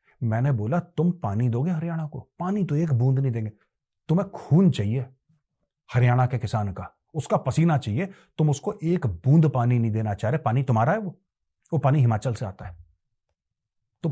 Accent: native